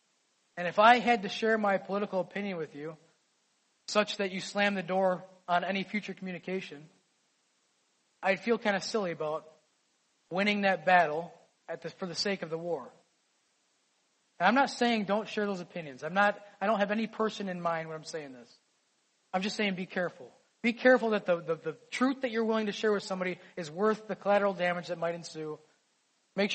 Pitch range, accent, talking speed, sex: 175-210 Hz, American, 195 wpm, male